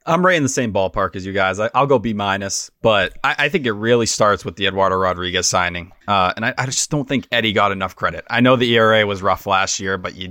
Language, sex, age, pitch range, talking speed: English, male, 20-39, 100-130 Hz, 270 wpm